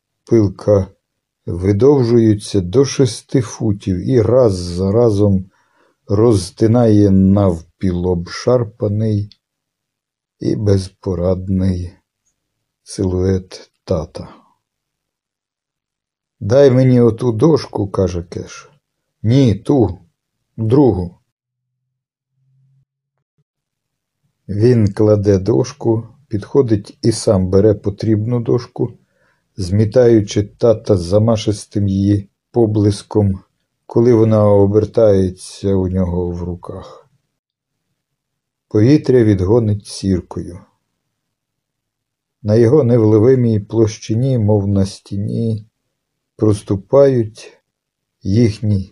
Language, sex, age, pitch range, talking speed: Ukrainian, male, 60-79, 100-125 Hz, 70 wpm